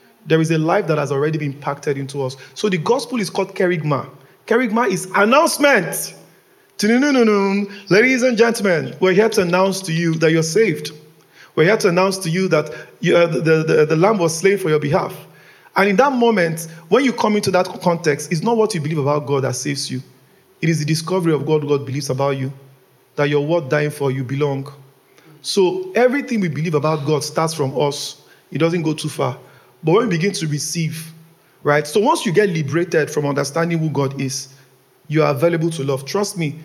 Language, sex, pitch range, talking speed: English, male, 145-185 Hz, 205 wpm